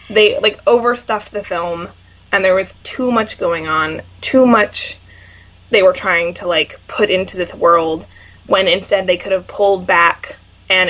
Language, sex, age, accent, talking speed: English, female, 20-39, American, 170 wpm